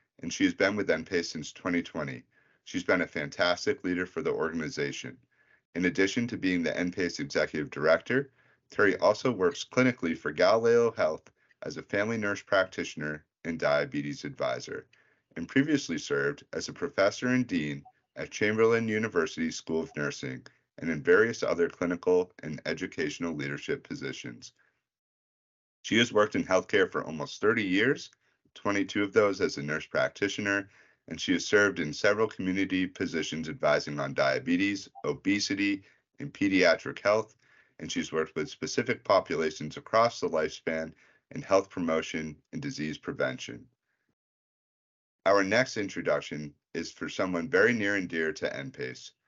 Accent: American